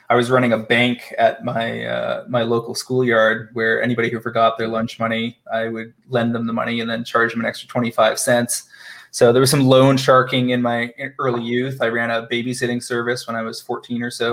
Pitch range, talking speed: 115-125 Hz, 220 wpm